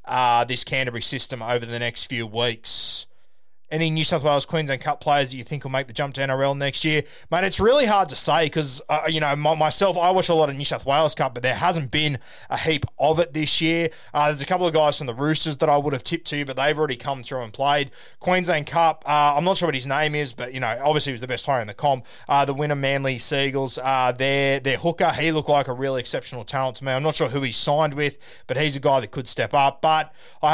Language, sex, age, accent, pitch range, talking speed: English, male, 20-39, Australian, 125-150 Hz, 270 wpm